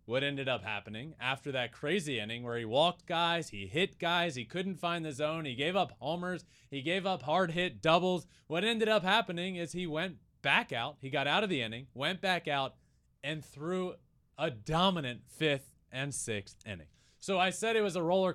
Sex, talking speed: male, 205 wpm